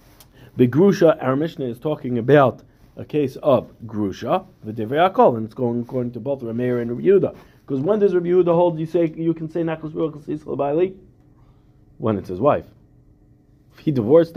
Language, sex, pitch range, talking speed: English, male, 120-150 Hz, 165 wpm